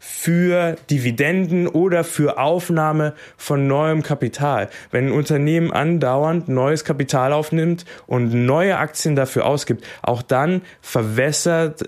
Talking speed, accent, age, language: 115 wpm, German, 20-39, German